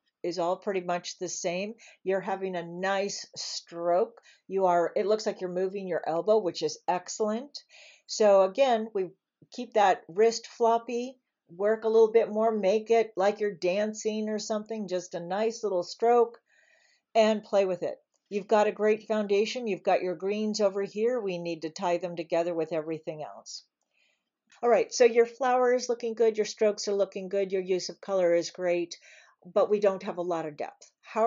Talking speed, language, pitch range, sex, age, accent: 190 wpm, English, 175-220 Hz, female, 50-69, American